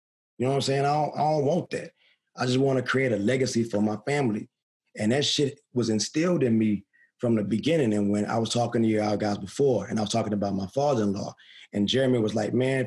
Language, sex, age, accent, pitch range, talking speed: English, male, 30-49, American, 110-145 Hz, 240 wpm